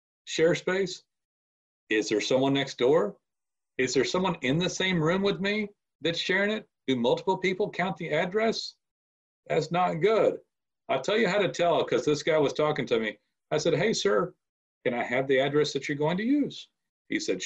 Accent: American